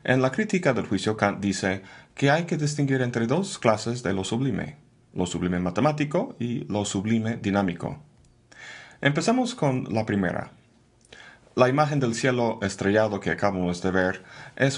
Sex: male